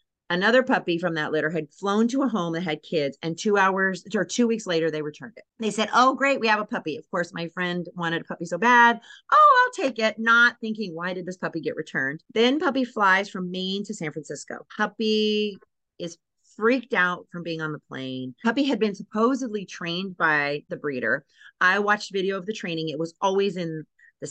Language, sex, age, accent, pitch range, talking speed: English, female, 40-59, American, 155-215 Hz, 215 wpm